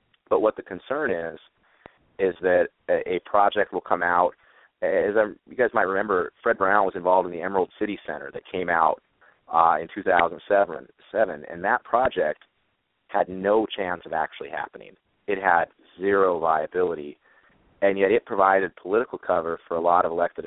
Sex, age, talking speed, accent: male, 30-49, 170 wpm, American